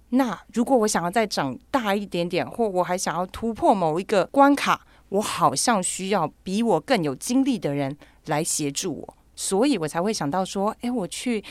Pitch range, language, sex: 175-265 Hz, Chinese, female